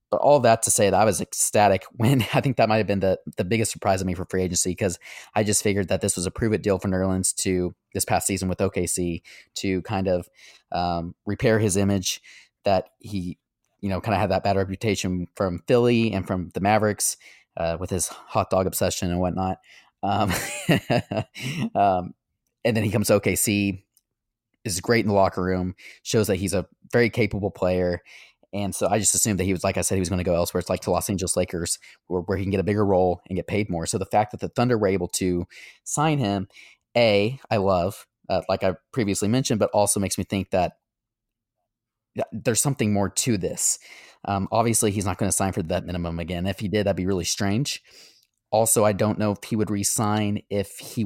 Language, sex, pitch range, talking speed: English, male, 90-110 Hz, 220 wpm